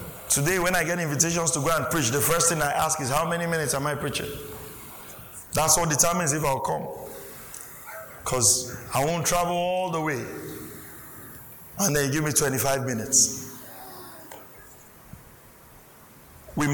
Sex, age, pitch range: male, 50-69, 135-175 Hz